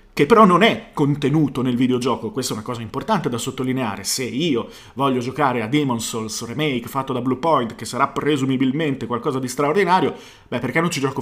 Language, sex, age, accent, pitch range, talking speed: Italian, male, 30-49, native, 120-155 Hz, 195 wpm